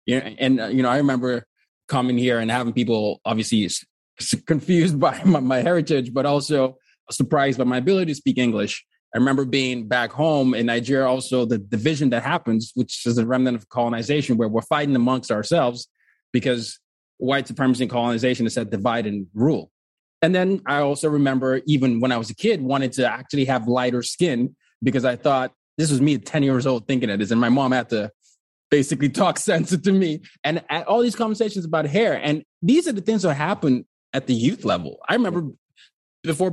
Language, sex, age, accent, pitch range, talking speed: English, male, 20-39, American, 125-155 Hz, 195 wpm